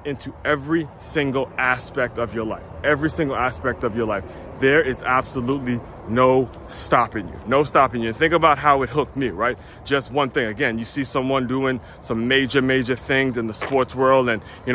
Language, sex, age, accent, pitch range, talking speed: English, male, 20-39, American, 115-135 Hz, 190 wpm